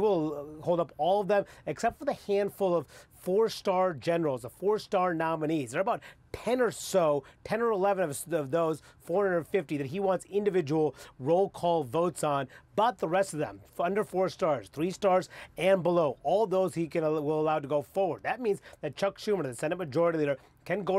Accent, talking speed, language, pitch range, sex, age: American, 195 wpm, English, 150-190 Hz, male, 30-49